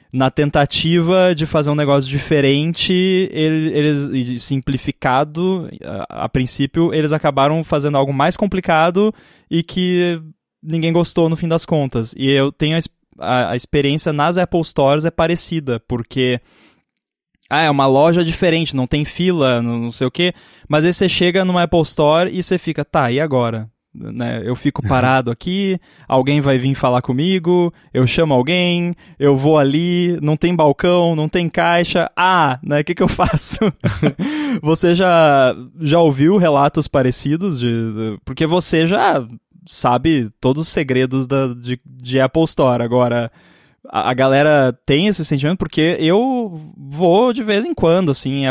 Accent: Brazilian